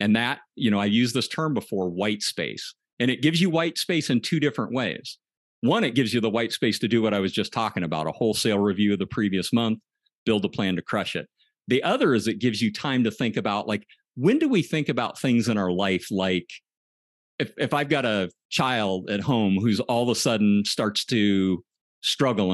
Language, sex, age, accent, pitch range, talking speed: English, male, 50-69, American, 105-145 Hz, 230 wpm